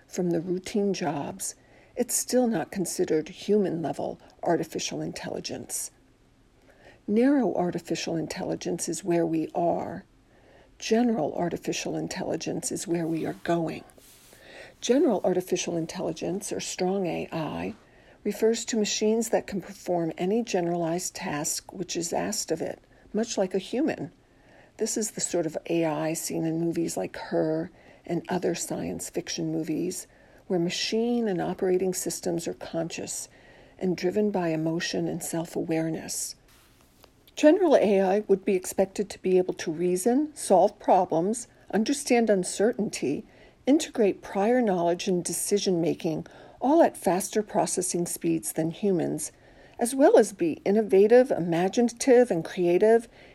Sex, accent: female, American